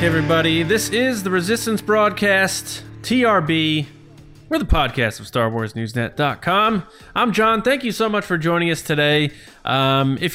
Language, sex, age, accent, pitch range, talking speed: English, male, 20-39, American, 115-160 Hz, 145 wpm